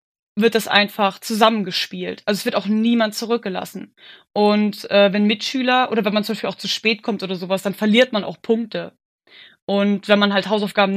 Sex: female